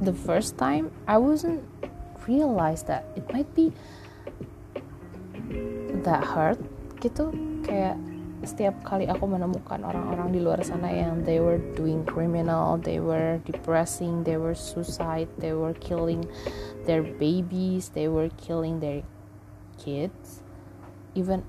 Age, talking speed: 20-39, 125 wpm